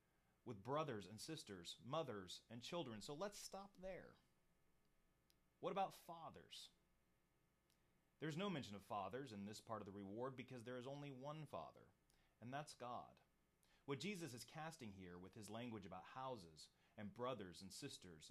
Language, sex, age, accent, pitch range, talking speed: English, male, 30-49, American, 85-135 Hz, 155 wpm